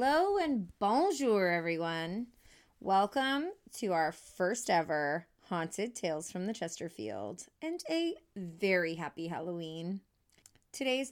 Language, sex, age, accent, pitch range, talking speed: English, female, 20-39, American, 165-220 Hz, 110 wpm